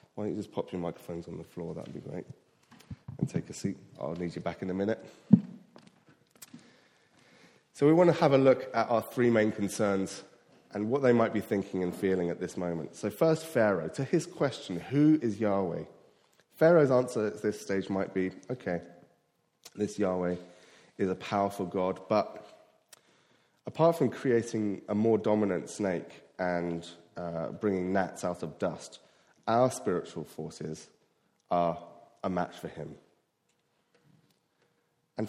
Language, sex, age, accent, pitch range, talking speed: English, male, 30-49, British, 90-130 Hz, 160 wpm